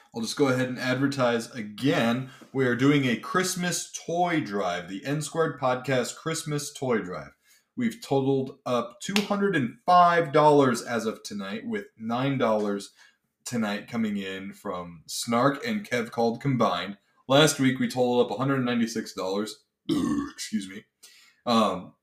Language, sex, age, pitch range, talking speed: English, male, 20-39, 110-150 Hz, 130 wpm